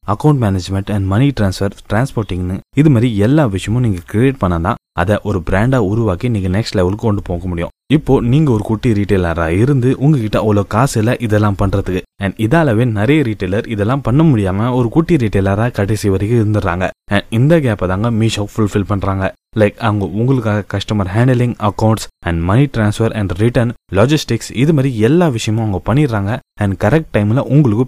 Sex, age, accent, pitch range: male, 20-39, native, 100-130 Hz